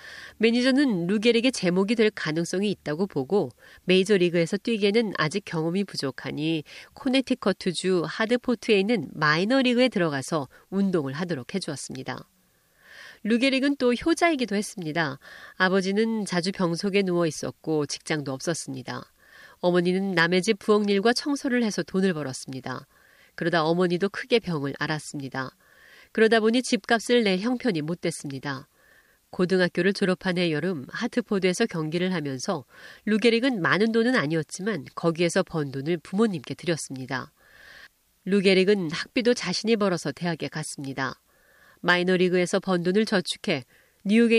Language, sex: Korean, female